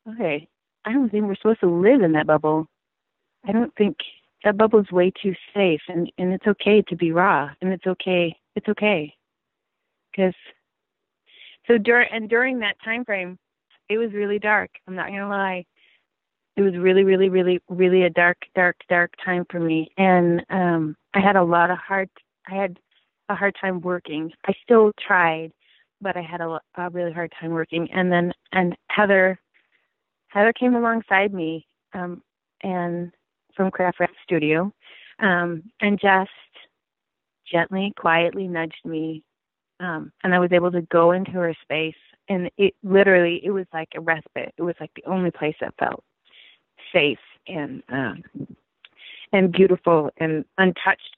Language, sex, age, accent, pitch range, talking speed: English, female, 30-49, American, 170-200 Hz, 165 wpm